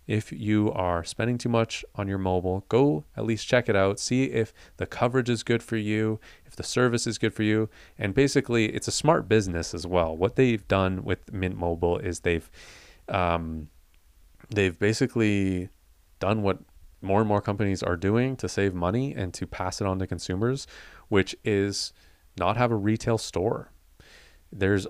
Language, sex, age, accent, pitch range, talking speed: English, male, 30-49, American, 90-110 Hz, 180 wpm